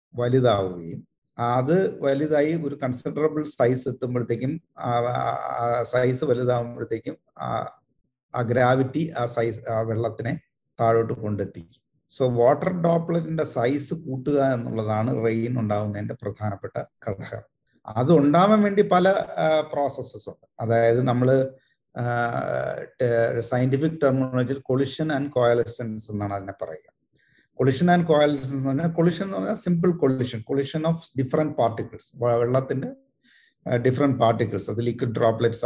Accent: native